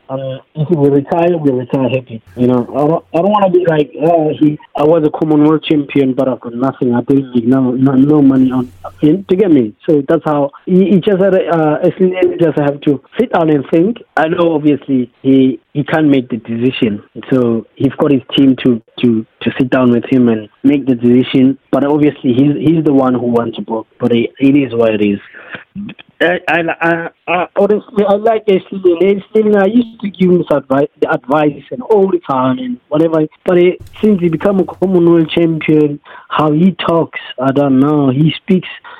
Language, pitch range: English, 125-165 Hz